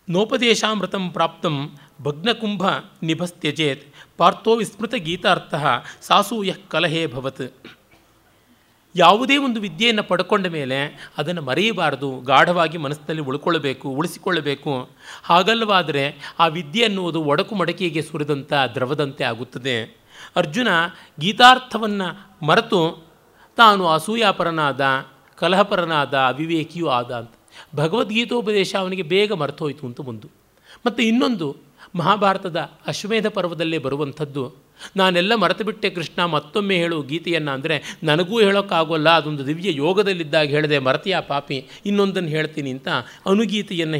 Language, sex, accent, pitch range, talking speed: Kannada, male, native, 145-195 Hz, 95 wpm